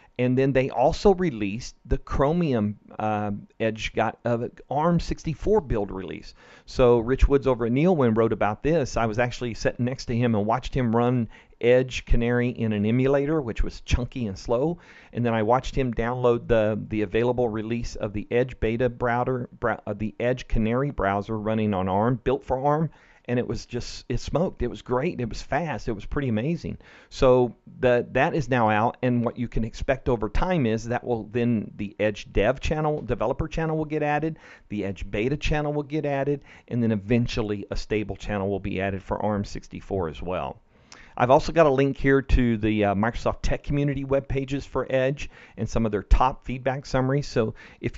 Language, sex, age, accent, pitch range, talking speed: English, male, 40-59, American, 110-135 Hz, 205 wpm